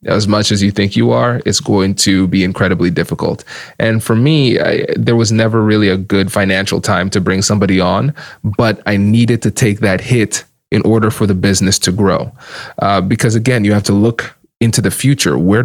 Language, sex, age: English, male, 20-39